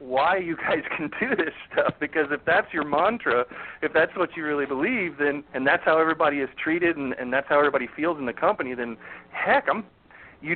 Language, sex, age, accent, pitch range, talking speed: English, male, 40-59, American, 135-185 Hz, 215 wpm